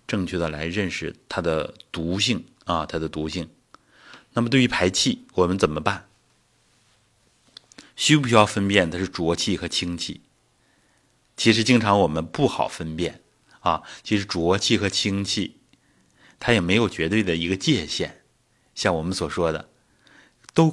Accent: native